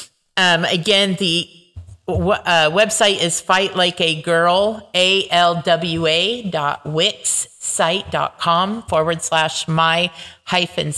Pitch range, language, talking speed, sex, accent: 160-195 Hz, English, 125 wpm, female, American